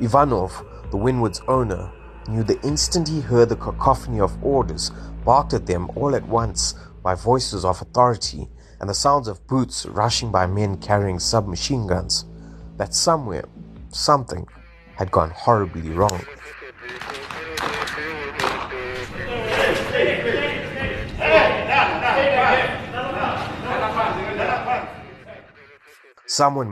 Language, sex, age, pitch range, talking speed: English, male, 30-49, 95-125 Hz, 95 wpm